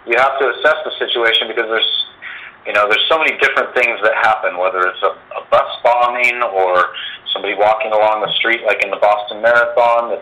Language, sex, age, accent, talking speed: English, male, 40-59, American, 205 wpm